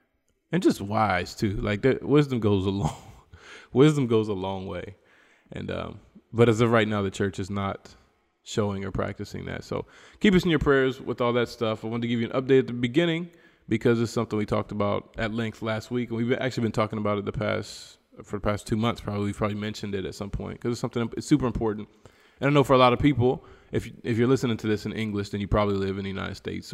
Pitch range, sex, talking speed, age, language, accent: 100-120 Hz, male, 250 wpm, 20-39, English, American